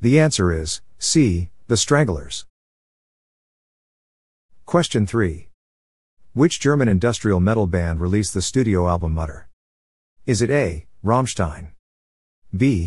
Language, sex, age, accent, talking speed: English, male, 50-69, American, 105 wpm